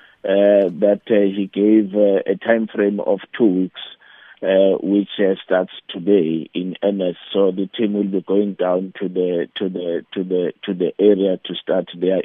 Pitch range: 95-110 Hz